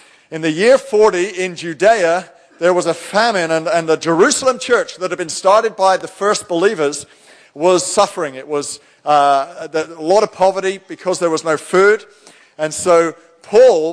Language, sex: English, male